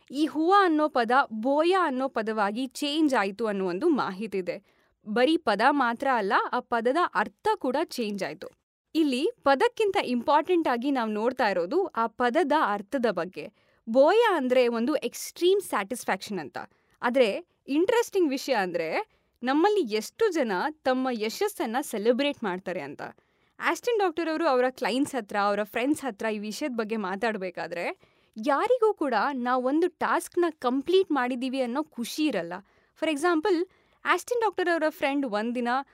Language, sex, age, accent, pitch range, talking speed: Kannada, female, 20-39, native, 225-315 Hz, 135 wpm